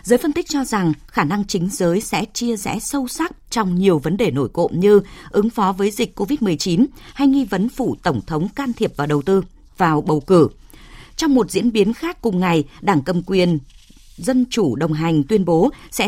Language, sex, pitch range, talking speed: Vietnamese, female, 175-240 Hz, 215 wpm